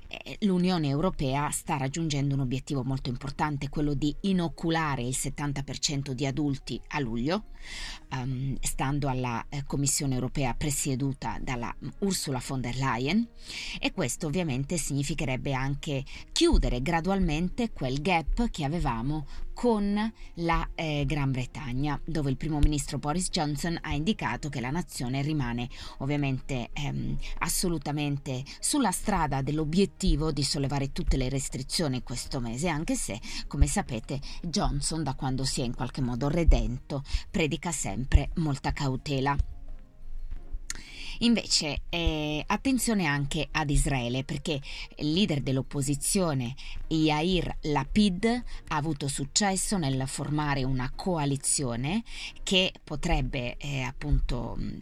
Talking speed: 120 wpm